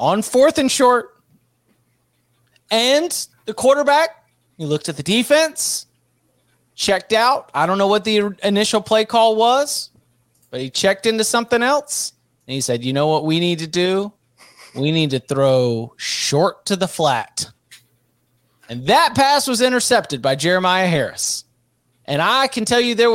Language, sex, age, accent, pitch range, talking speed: English, male, 30-49, American, 145-225 Hz, 160 wpm